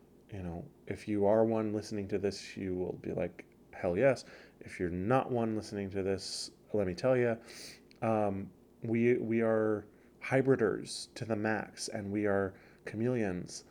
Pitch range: 100-120 Hz